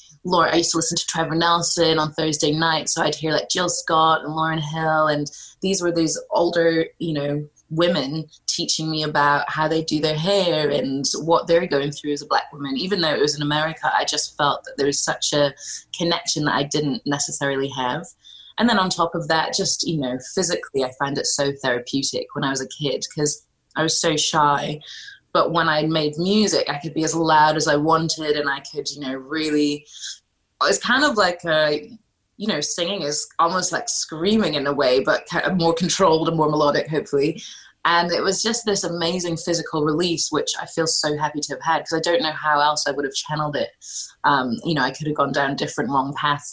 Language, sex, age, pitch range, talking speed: English, female, 20-39, 145-170 Hz, 215 wpm